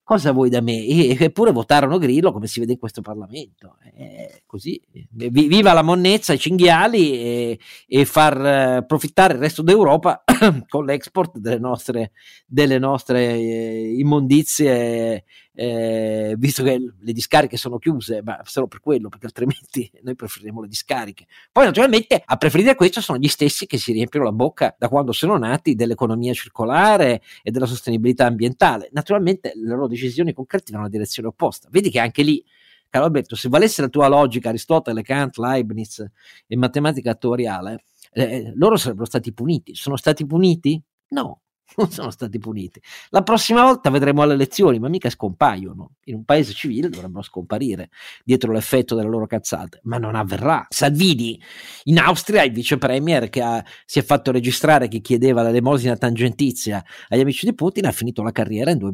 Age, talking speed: 50-69, 170 wpm